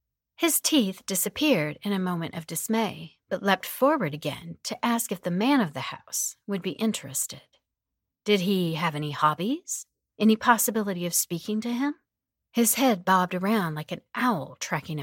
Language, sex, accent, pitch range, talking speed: English, female, American, 165-240 Hz, 170 wpm